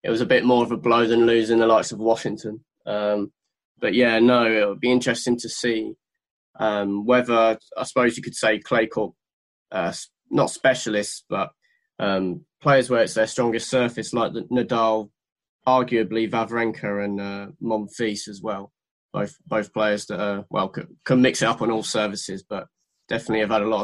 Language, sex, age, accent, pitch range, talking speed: English, male, 20-39, British, 105-120 Hz, 185 wpm